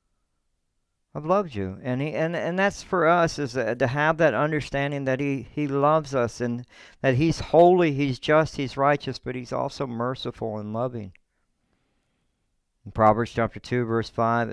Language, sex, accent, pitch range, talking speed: English, male, American, 95-135 Hz, 165 wpm